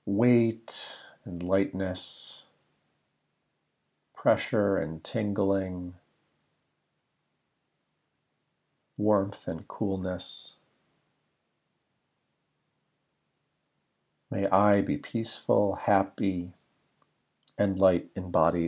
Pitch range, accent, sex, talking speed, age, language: 95-110 Hz, American, male, 60 wpm, 40-59, English